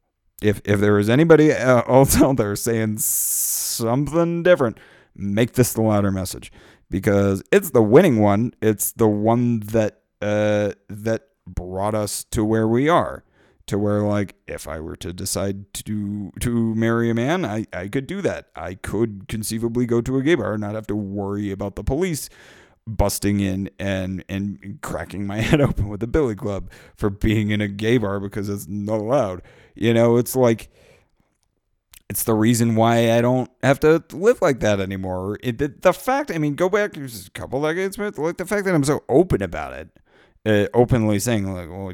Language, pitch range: English, 100-125 Hz